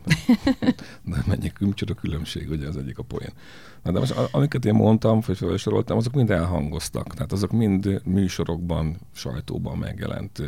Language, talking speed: English, 135 wpm